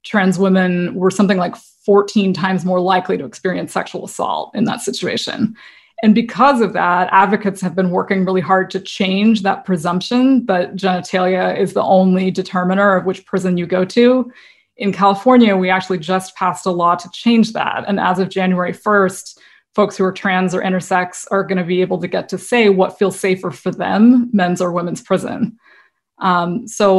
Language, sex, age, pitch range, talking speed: English, female, 20-39, 185-205 Hz, 185 wpm